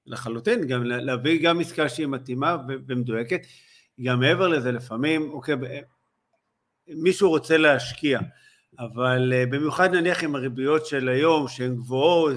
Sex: male